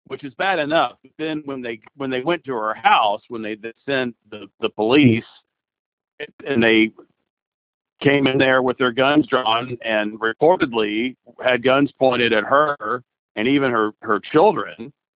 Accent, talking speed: American, 165 wpm